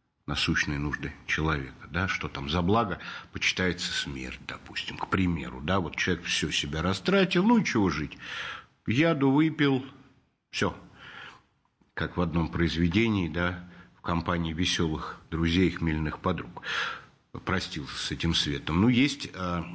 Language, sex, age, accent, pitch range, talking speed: Russian, male, 50-69, native, 85-110 Hz, 135 wpm